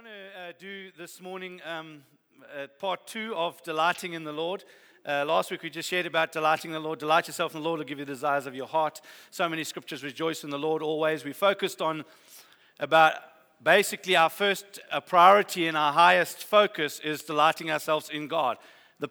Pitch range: 145-180 Hz